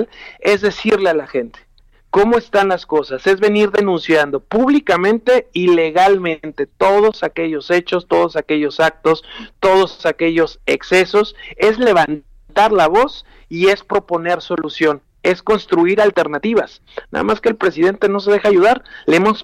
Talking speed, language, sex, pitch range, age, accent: 140 wpm, Spanish, male, 160-215 Hz, 50-69, Mexican